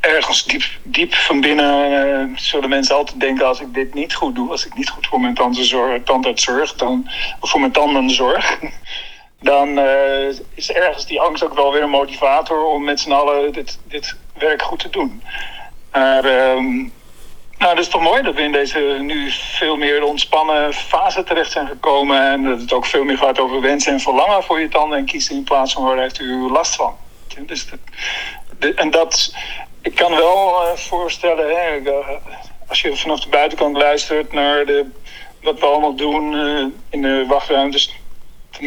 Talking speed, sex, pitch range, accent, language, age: 185 wpm, male, 140-180 Hz, Dutch, Dutch, 50-69